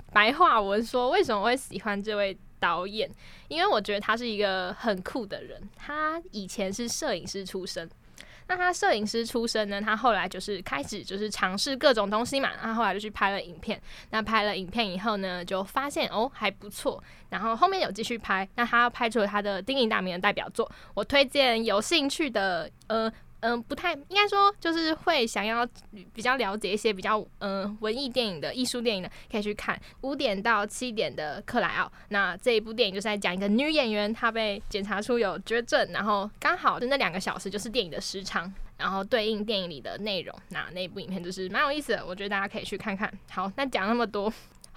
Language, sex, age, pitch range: Chinese, female, 10-29, 200-240 Hz